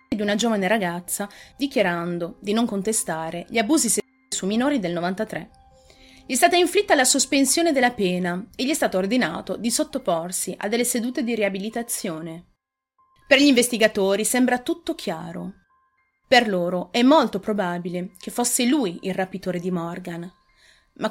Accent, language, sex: native, Italian, female